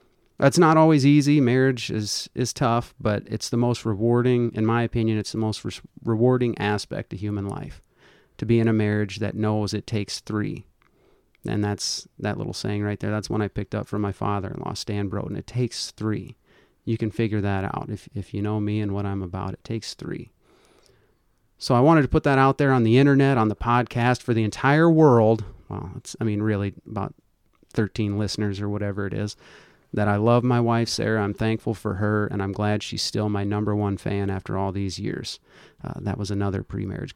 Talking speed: 210 wpm